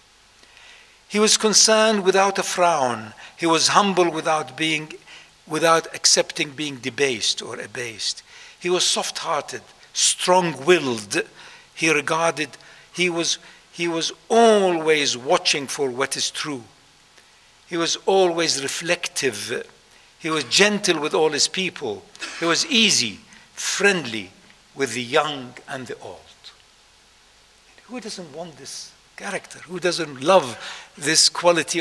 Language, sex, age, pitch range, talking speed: English, male, 60-79, 150-200 Hz, 120 wpm